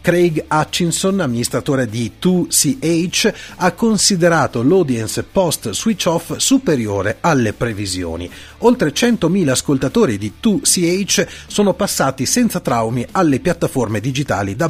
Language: Italian